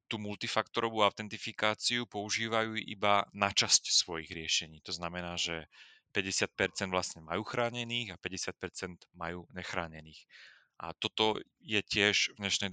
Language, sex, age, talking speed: Slovak, male, 30-49, 125 wpm